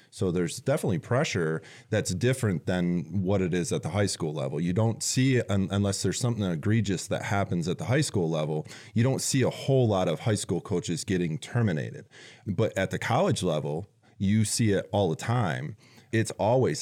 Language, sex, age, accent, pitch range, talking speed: English, male, 30-49, American, 90-115 Hz, 195 wpm